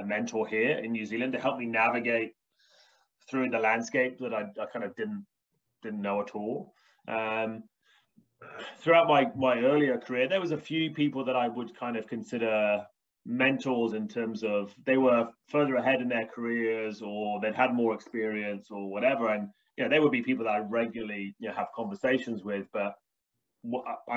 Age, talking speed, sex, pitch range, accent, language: 20-39, 185 wpm, male, 105-130 Hz, British, English